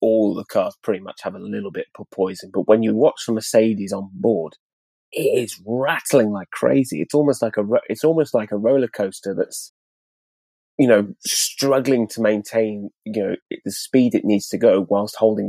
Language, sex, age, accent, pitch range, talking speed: Greek, male, 20-39, British, 100-120 Hz, 200 wpm